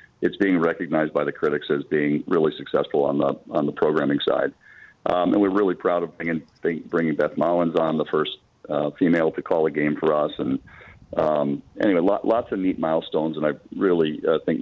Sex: male